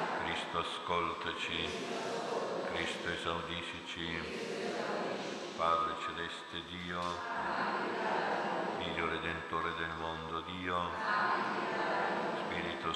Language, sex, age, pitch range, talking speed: Italian, male, 60-79, 80-85 Hz, 55 wpm